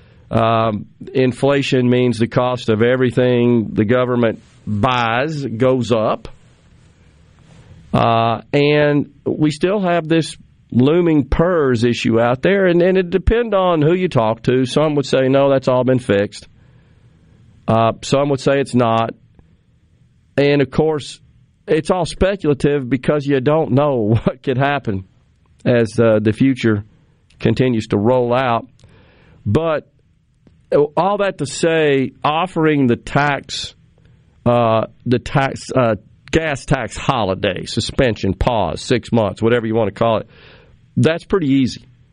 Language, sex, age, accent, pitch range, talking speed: English, male, 50-69, American, 115-145 Hz, 135 wpm